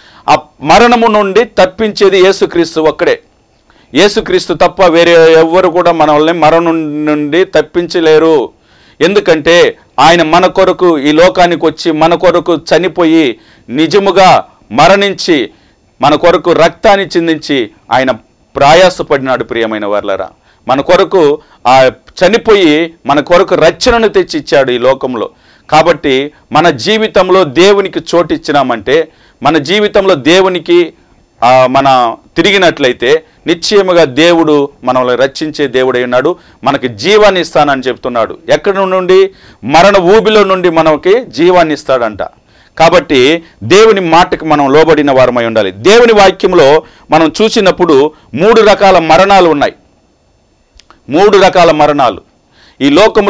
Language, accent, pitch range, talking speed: Hindi, native, 150-195 Hz, 80 wpm